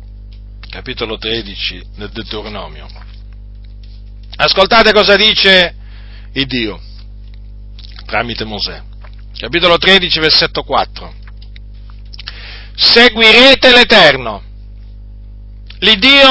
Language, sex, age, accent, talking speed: Italian, male, 50-69, native, 65 wpm